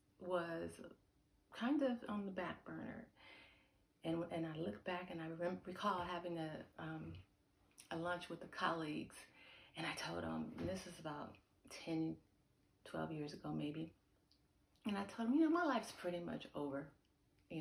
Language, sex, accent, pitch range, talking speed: English, female, American, 145-180 Hz, 165 wpm